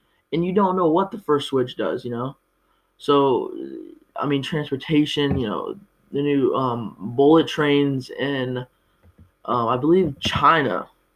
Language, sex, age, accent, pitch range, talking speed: English, male, 20-39, American, 125-155 Hz, 145 wpm